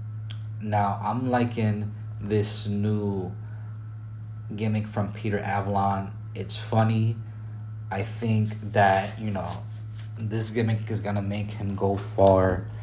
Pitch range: 100-110 Hz